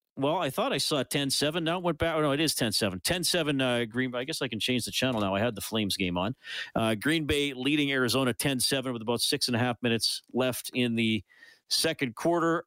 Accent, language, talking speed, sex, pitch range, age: American, English, 245 wpm, male, 110-135 Hz, 40-59